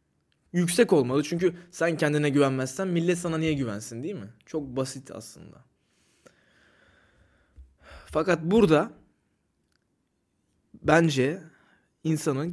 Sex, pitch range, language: male, 120-160 Hz, Turkish